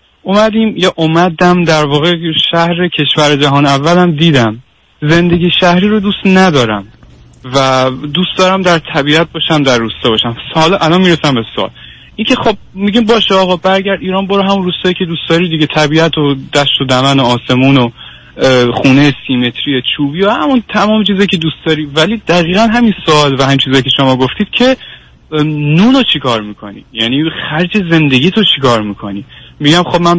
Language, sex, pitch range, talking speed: Persian, male, 135-180 Hz, 165 wpm